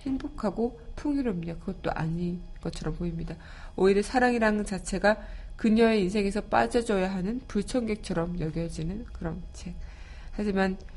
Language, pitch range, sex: Korean, 165-205 Hz, female